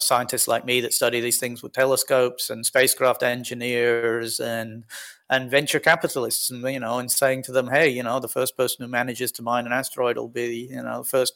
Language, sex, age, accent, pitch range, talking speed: English, male, 30-49, British, 120-135 Hz, 215 wpm